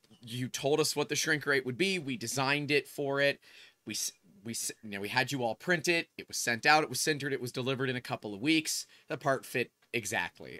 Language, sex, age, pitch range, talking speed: English, male, 30-49, 120-155 Hz, 245 wpm